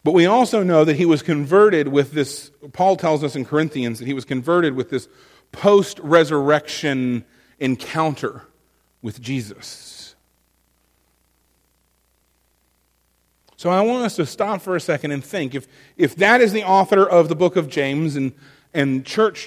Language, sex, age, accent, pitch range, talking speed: English, male, 40-59, American, 135-210 Hz, 155 wpm